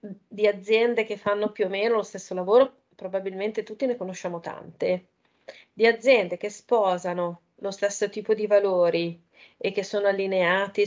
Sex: female